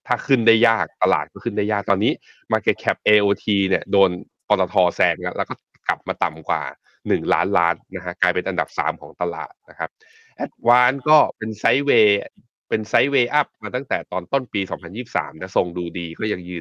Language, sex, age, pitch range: Thai, male, 20-39, 95-125 Hz